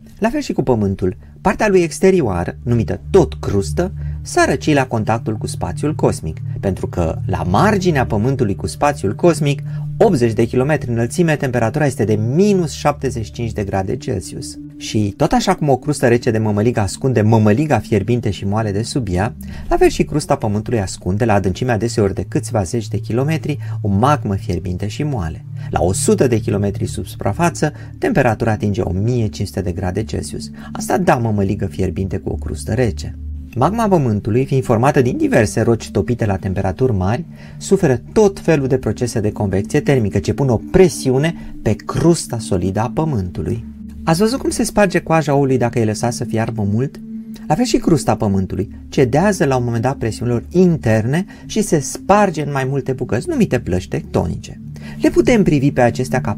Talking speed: 170 wpm